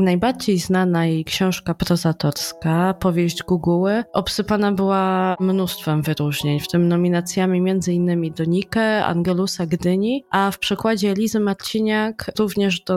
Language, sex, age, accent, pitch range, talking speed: Polish, female, 20-39, native, 175-200 Hz, 115 wpm